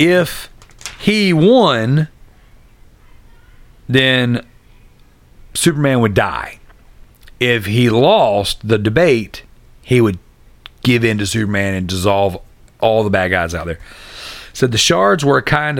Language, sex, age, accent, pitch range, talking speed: English, male, 40-59, American, 105-140 Hz, 120 wpm